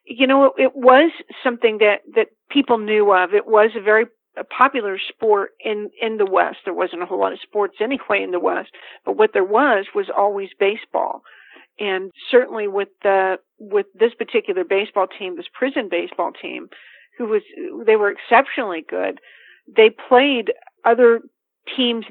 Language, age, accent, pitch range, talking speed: English, 50-69, American, 200-305 Hz, 165 wpm